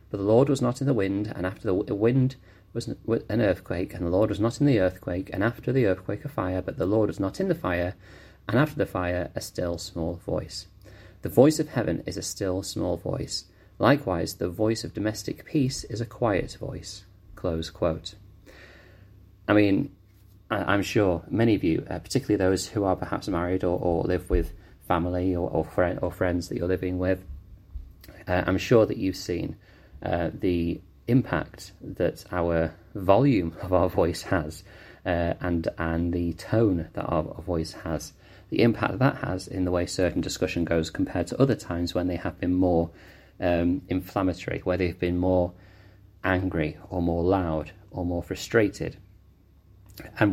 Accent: British